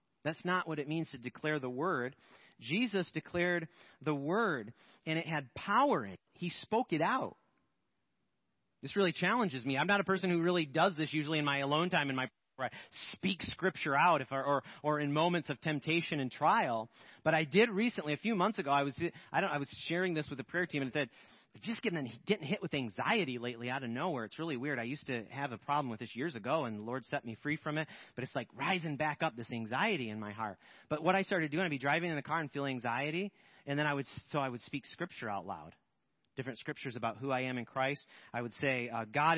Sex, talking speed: male, 245 wpm